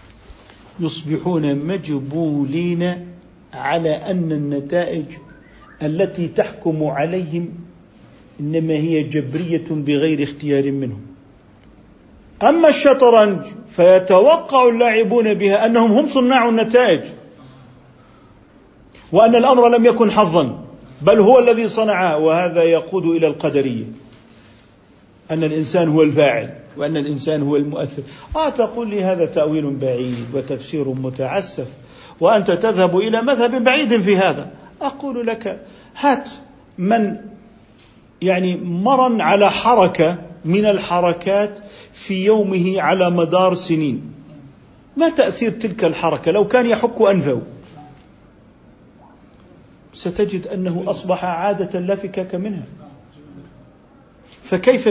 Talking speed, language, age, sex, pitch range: 95 wpm, Arabic, 50-69, male, 150-210 Hz